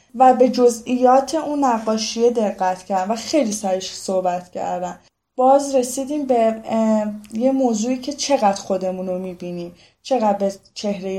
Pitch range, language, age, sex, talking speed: 195-255 Hz, Persian, 10-29, female, 130 wpm